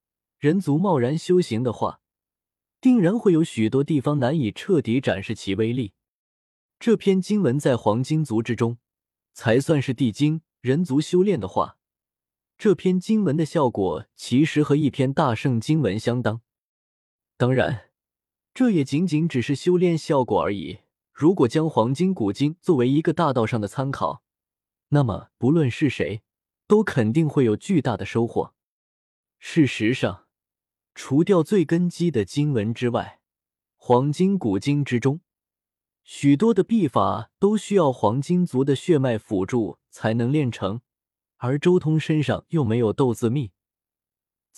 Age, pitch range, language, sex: 20-39, 115-165 Hz, Chinese, male